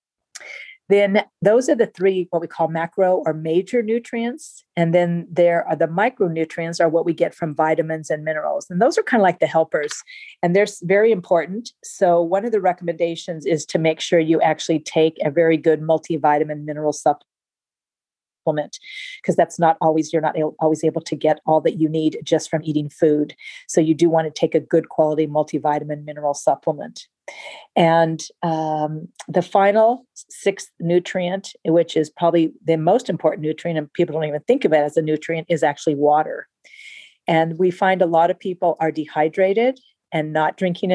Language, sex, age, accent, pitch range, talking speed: English, female, 40-59, American, 155-180 Hz, 185 wpm